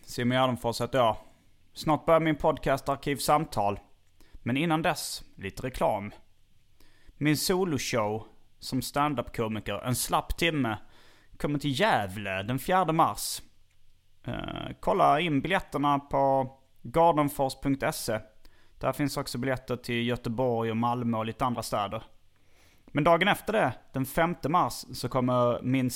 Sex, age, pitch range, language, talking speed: male, 30-49, 110-145 Hz, Swedish, 130 wpm